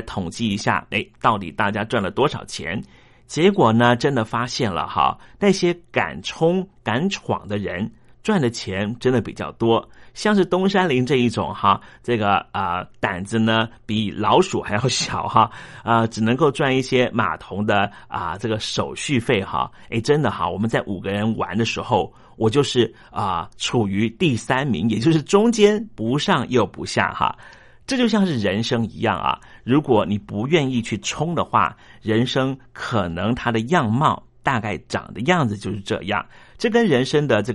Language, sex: Chinese, male